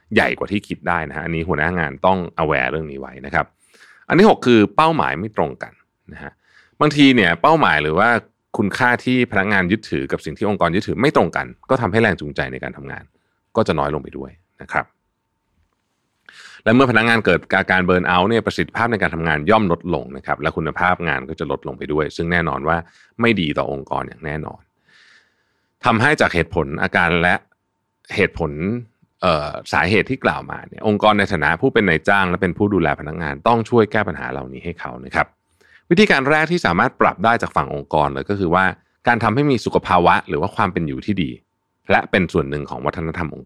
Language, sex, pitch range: Thai, male, 80-115 Hz